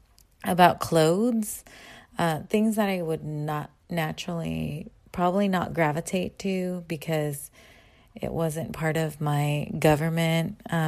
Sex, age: female, 20-39